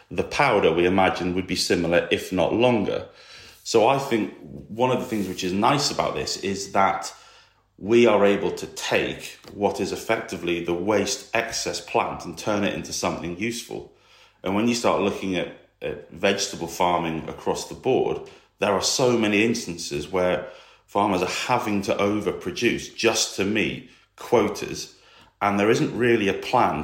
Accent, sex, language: British, male, English